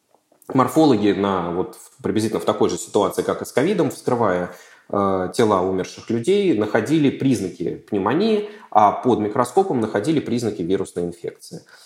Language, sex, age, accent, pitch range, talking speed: Russian, male, 20-39, native, 95-140 Hz, 125 wpm